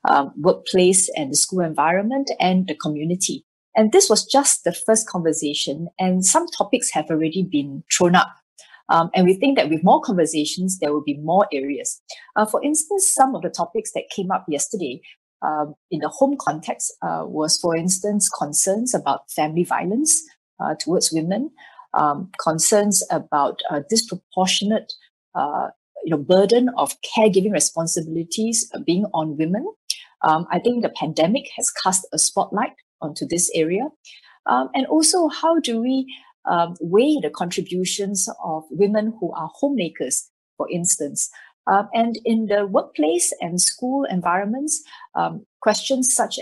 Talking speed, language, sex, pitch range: 150 wpm, English, female, 170-240 Hz